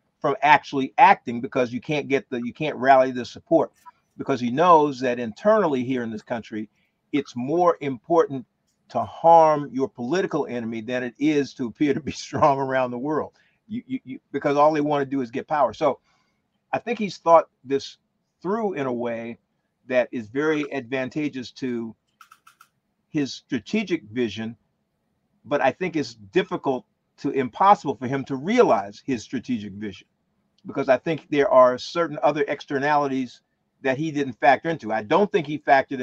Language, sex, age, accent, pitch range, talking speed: English, male, 50-69, American, 125-160 Hz, 165 wpm